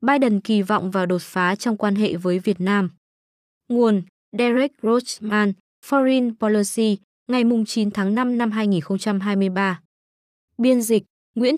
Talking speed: 135 wpm